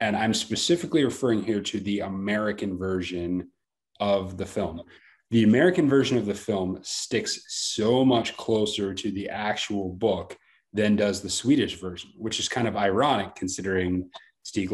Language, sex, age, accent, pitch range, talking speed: English, male, 30-49, American, 100-115 Hz, 155 wpm